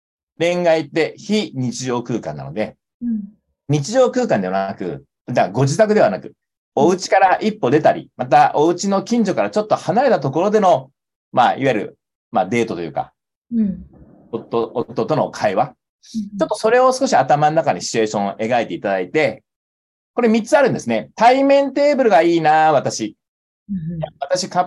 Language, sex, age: Japanese, male, 40-59